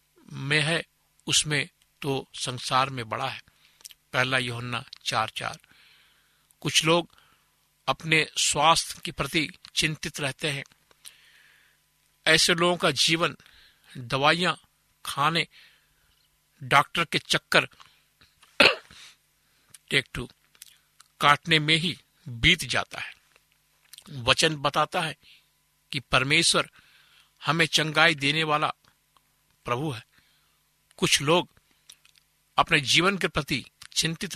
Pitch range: 130-160 Hz